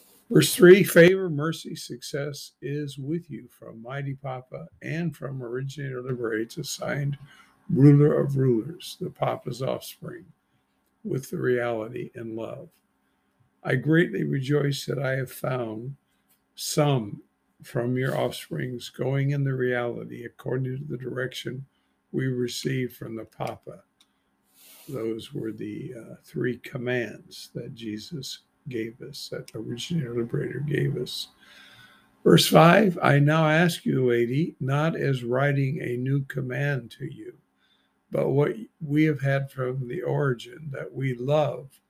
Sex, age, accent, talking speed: male, 50-69, American, 135 wpm